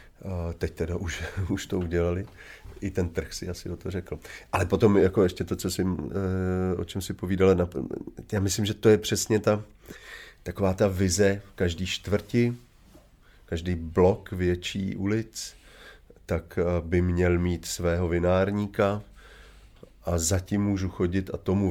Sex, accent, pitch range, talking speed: male, native, 85-100 Hz, 140 wpm